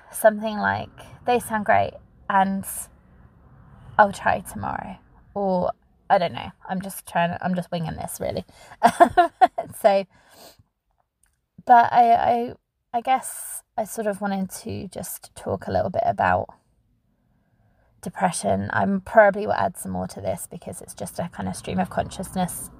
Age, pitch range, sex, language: 20-39, 185-215 Hz, female, English